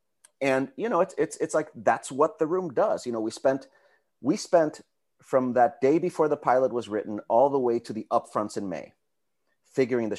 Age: 30-49